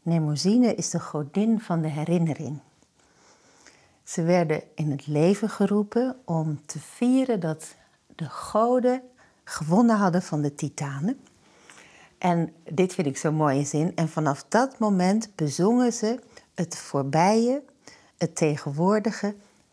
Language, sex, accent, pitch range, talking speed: Dutch, female, Dutch, 155-205 Hz, 125 wpm